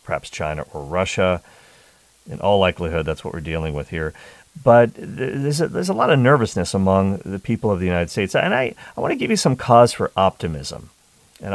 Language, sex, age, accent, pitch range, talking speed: English, male, 40-59, American, 85-115 Hz, 210 wpm